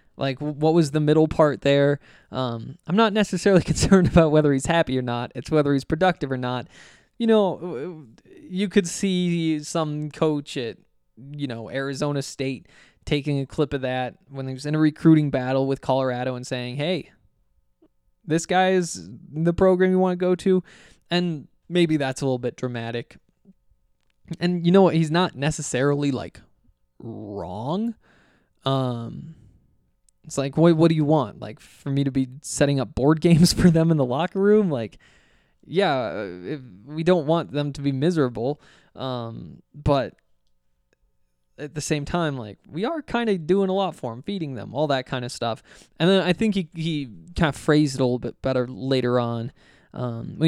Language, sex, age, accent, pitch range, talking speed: English, male, 20-39, American, 130-170 Hz, 180 wpm